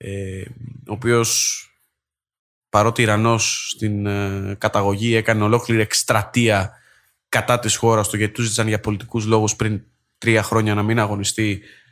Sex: male